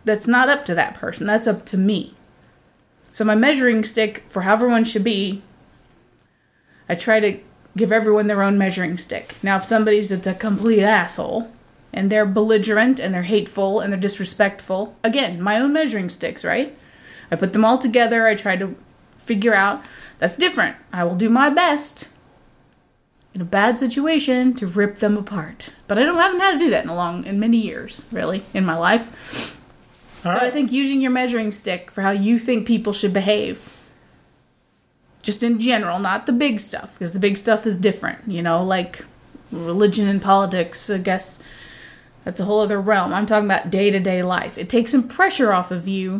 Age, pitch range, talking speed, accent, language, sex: 30-49, 195-240 Hz, 185 wpm, American, English, female